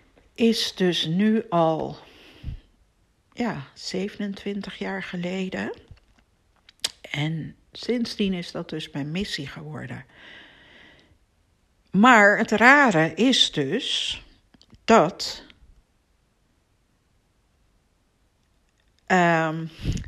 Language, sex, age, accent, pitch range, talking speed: Dutch, female, 60-79, Dutch, 155-220 Hz, 70 wpm